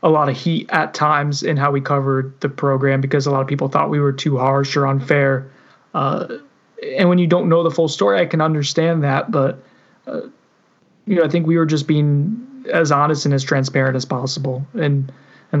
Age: 20-39